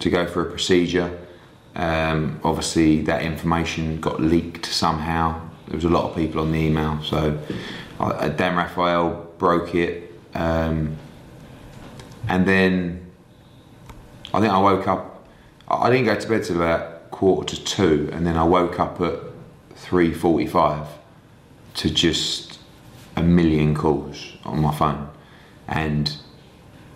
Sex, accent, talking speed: male, British, 135 wpm